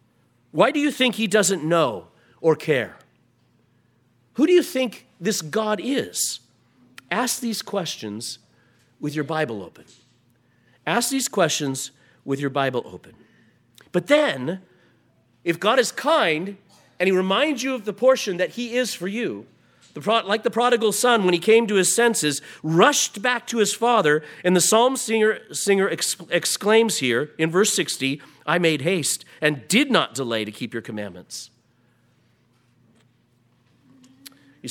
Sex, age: male, 40-59